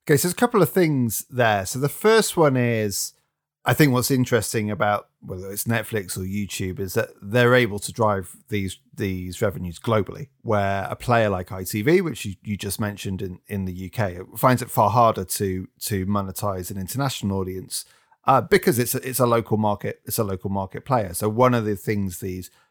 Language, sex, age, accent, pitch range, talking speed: English, male, 30-49, British, 100-130 Hz, 200 wpm